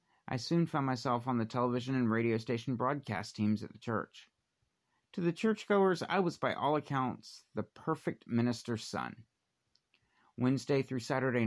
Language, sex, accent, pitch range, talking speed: English, male, American, 115-140 Hz, 155 wpm